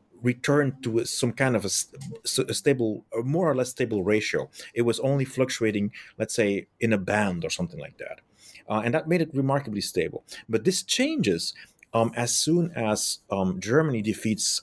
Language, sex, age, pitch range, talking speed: English, male, 30-49, 100-130 Hz, 175 wpm